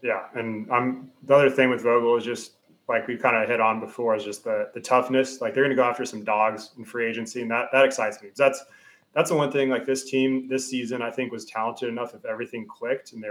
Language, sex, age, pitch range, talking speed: English, male, 20-39, 115-130 Hz, 265 wpm